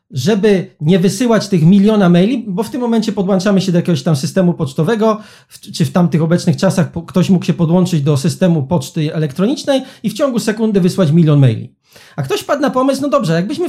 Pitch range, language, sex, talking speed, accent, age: 170-220 Hz, Polish, male, 195 wpm, native, 40-59